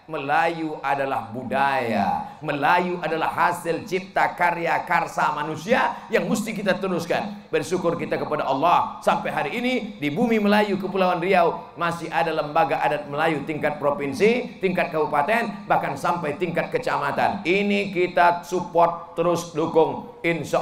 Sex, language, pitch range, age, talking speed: male, Indonesian, 145-190 Hz, 40-59, 130 wpm